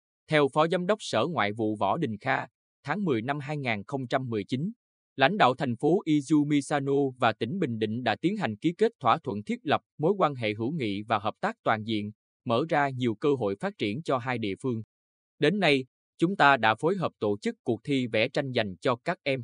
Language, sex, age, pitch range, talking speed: Vietnamese, male, 20-39, 110-150 Hz, 215 wpm